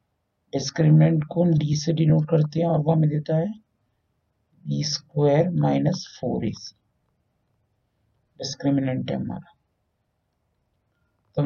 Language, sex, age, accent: Hindi, male, 50-69, native